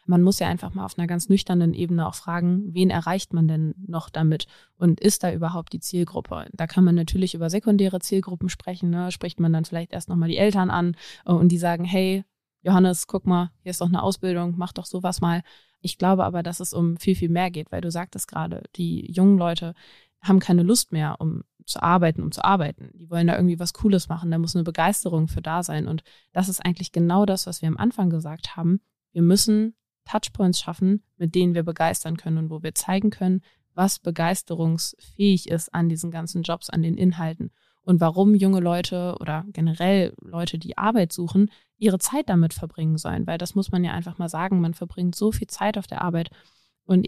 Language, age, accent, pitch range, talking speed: German, 20-39, German, 170-190 Hz, 210 wpm